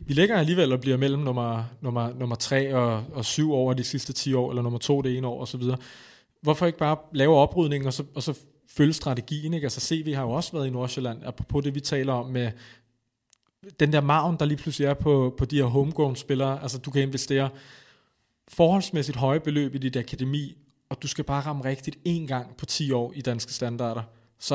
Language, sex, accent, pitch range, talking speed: Danish, male, native, 125-150 Hz, 215 wpm